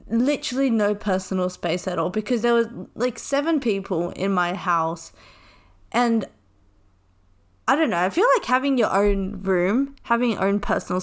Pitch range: 180-245 Hz